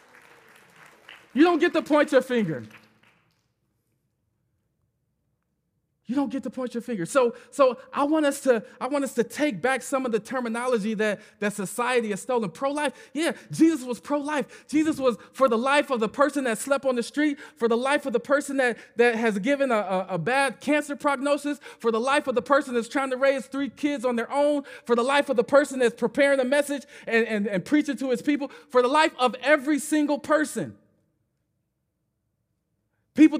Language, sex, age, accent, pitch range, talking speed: English, male, 20-39, American, 210-280 Hz, 195 wpm